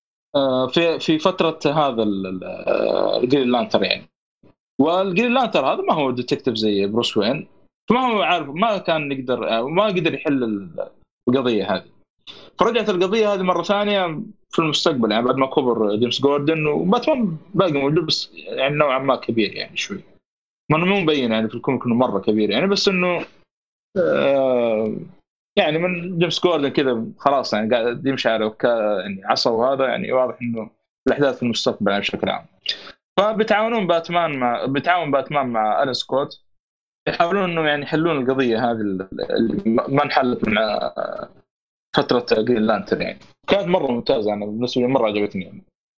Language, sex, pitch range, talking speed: Arabic, male, 120-175 Hz, 145 wpm